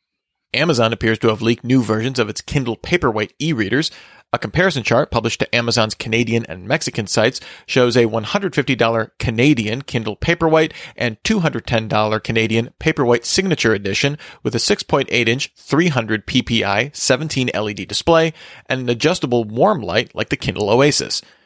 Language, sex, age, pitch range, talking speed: English, male, 40-59, 115-145 Hz, 140 wpm